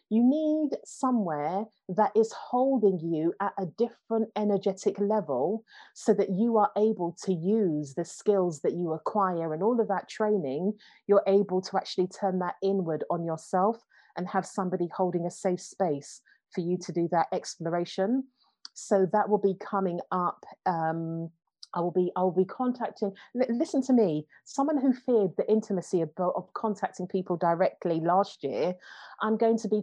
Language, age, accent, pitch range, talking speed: English, 30-49, British, 175-210 Hz, 170 wpm